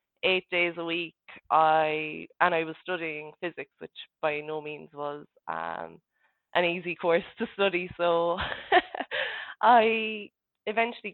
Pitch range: 155-190 Hz